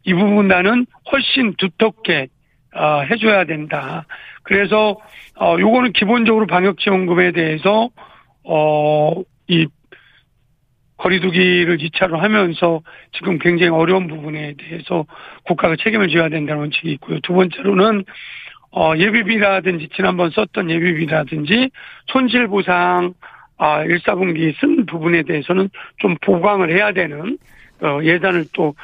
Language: Korean